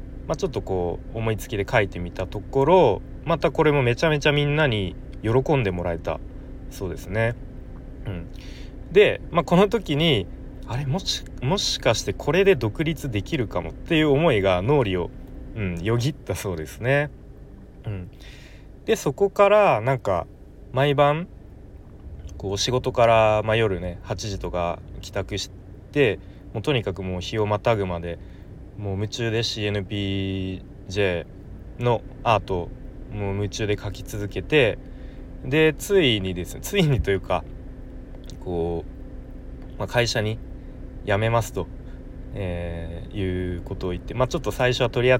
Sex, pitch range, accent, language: male, 95-130 Hz, native, Japanese